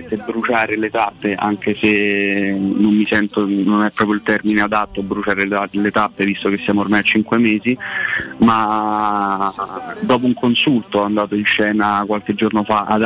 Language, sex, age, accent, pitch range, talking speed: Italian, male, 30-49, native, 100-110 Hz, 165 wpm